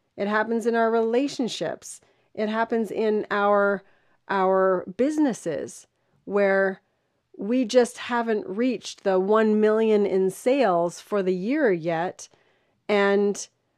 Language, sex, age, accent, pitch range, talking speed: English, female, 30-49, American, 180-225 Hz, 115 wpm